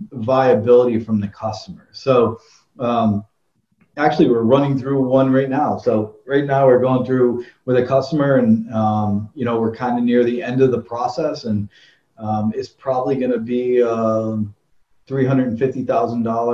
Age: 40-59